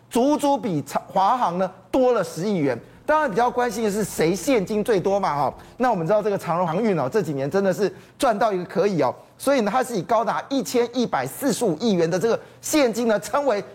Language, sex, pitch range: Chinese, male, 180-245 Hz